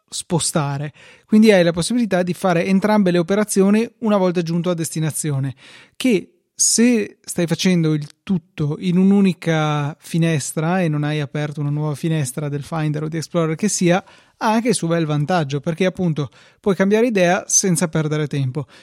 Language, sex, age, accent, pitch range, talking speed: Italian, male, 20-39, native, 150-185 Hz, 165 wpm